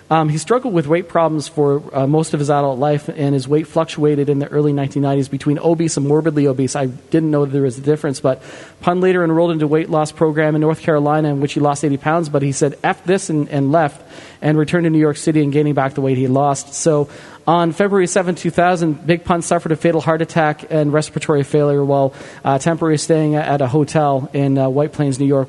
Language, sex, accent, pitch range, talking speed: English, male, American, 140-165 Hz, 235 wpm